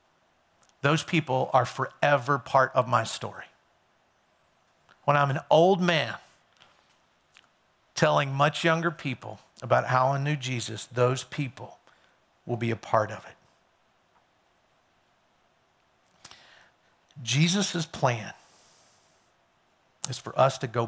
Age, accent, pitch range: 50-69, American, 130-190 Hz